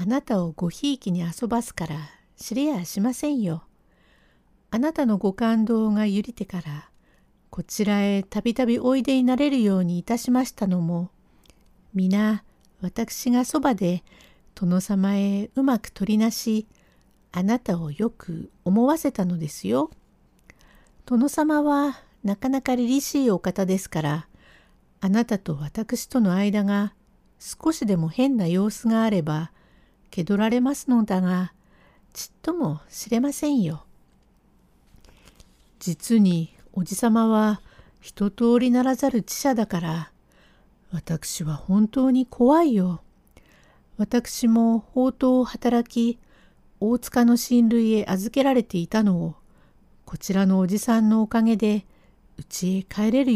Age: 60-79